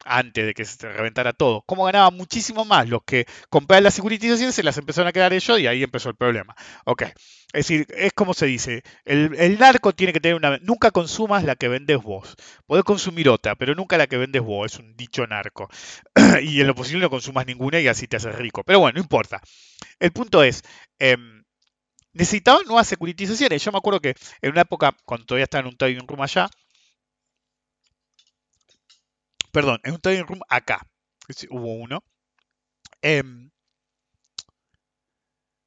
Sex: male